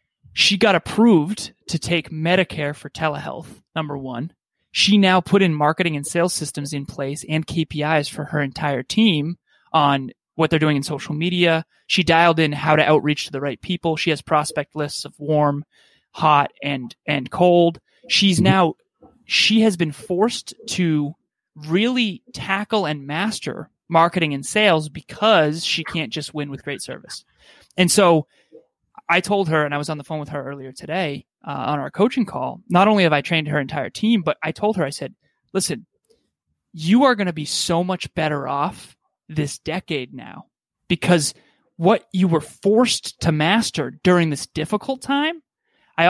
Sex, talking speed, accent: male, 175 wpm, American